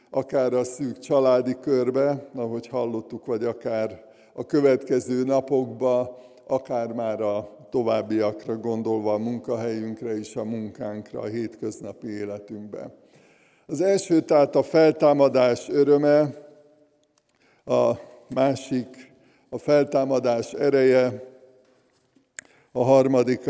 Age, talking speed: 60-79, 95 wpm